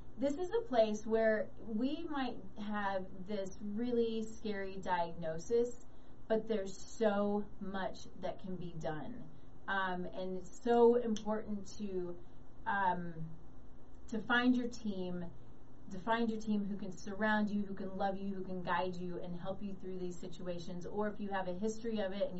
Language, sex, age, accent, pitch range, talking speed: English, female, 30-49, American, 180-220 Hz, 165 wpm